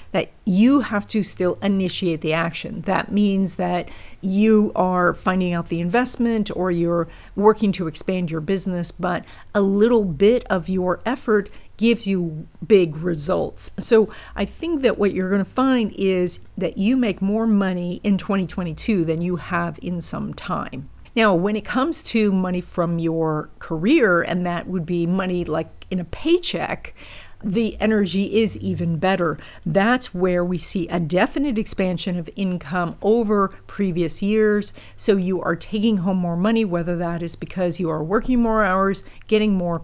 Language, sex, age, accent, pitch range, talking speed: English, female, 50-69, American, 175-210 Hz, 165 wpm